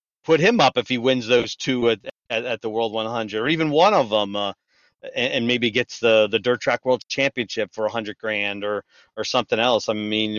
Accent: American